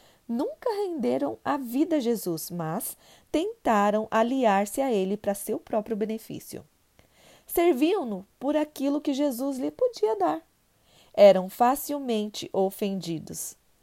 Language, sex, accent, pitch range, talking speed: Portuguese, female, Brazilian, 195-270 Hz, 115 wpm